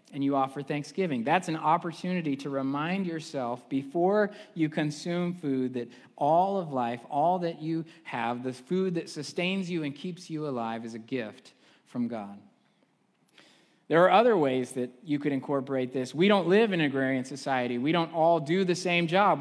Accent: American